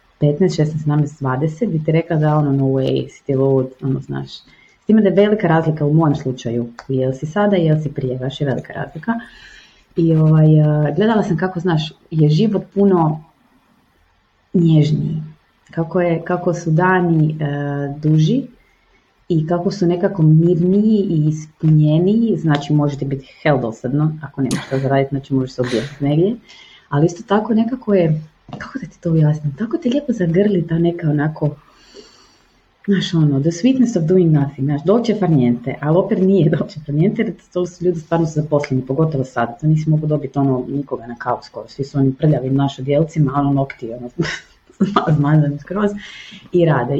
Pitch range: 140-180 Hz